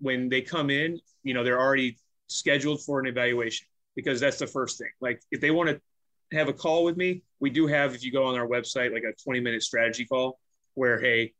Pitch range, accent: 120-140 Hz, American